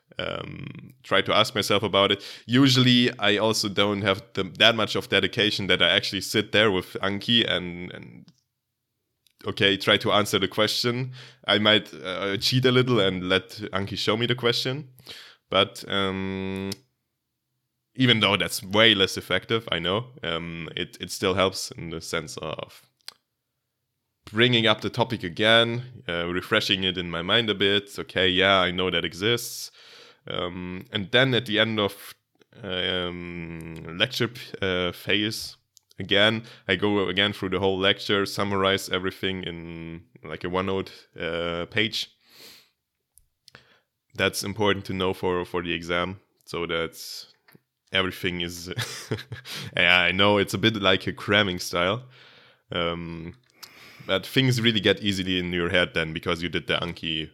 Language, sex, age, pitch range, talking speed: English, male, 20-39, 90-110 Hz, 155 wpm